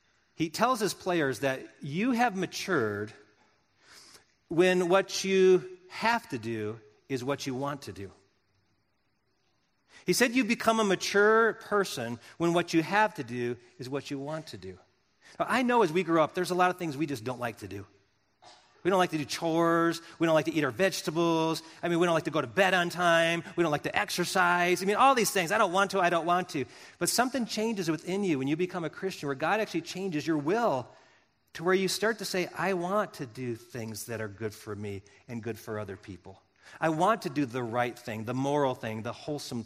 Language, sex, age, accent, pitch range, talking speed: English, male, 40-59, American, 135-195 Hz, 220 wpm